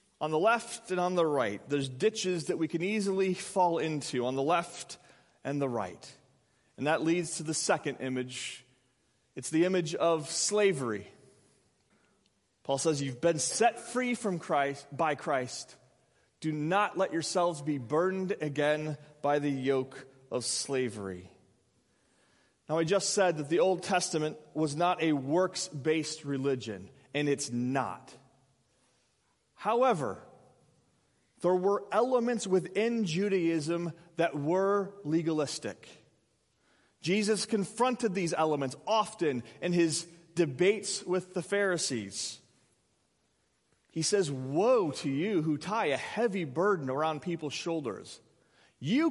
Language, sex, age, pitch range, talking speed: English, male, 30-49, 140-195 Hz, 130 wpm